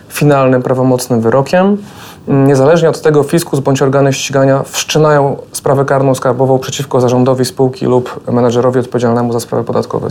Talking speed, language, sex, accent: 135 wpm, Polish, male, native